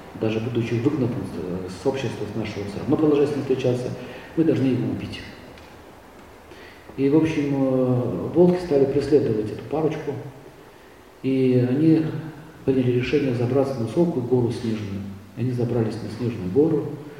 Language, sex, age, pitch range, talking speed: Russian, male, 50-69, 115-140 Hz, 130 wpm